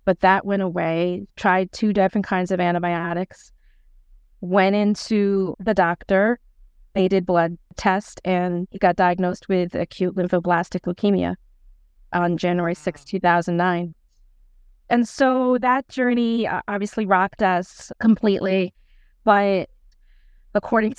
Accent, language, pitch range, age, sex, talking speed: American, English, 180-205 Hz, 30-49, female, 115 wpm